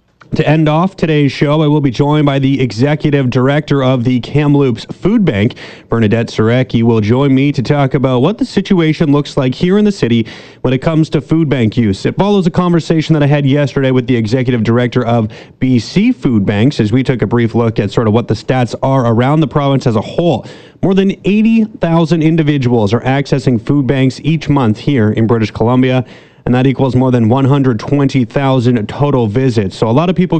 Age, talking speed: 30-49, 205 wpm